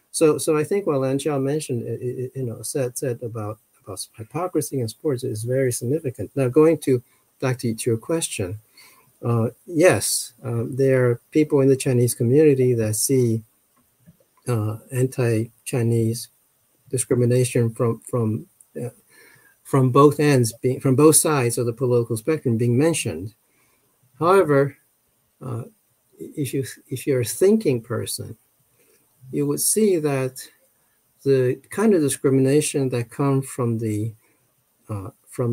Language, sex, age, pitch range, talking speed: English, male, 50-69, 115-145 Hz, 140 wpm